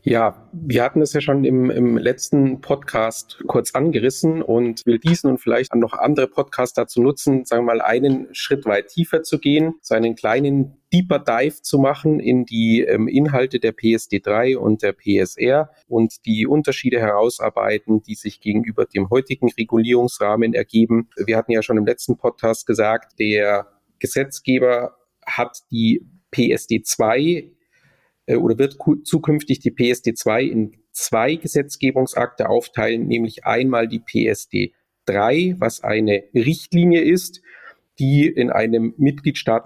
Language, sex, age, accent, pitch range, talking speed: German, male, 40-59, German, 115-145 Hz, 145 wpm